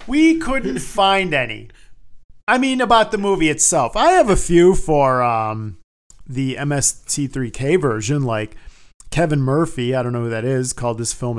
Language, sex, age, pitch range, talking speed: English, male, 40-59, 120-150 Hz, 165 wpm